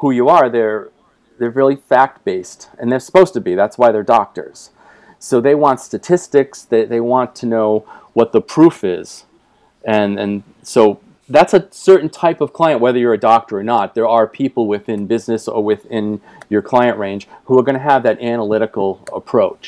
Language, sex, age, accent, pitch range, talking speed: English, male, 40-59, American, 110-140 Hz, 190 wpm